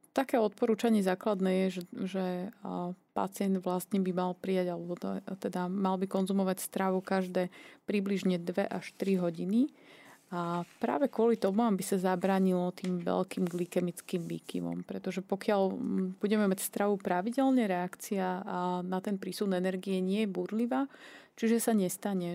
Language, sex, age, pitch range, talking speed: Slovak, female, 30-49, 180-200 Hz, 135 wpm